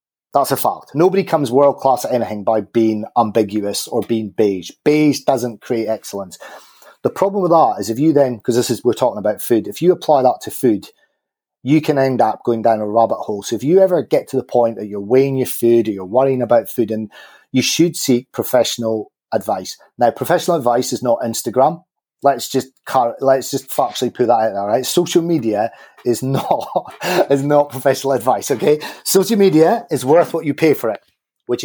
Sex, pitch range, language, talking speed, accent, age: male, 120-155 Hz, English, 205 wpm, British, 30-49